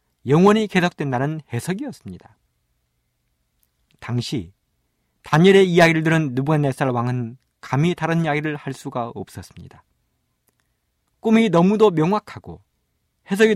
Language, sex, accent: Korean, male, native